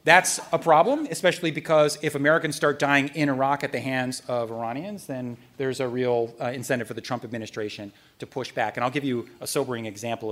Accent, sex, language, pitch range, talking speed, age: American, male, English, 130-160 Hz, 210 wpm, 40-59